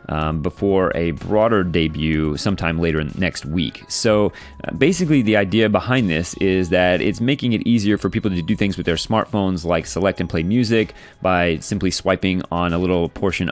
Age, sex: 30-49, male